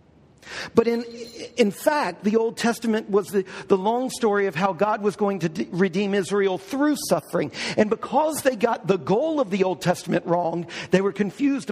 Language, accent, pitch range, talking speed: English, American, 195-255 Hz, 190 wpm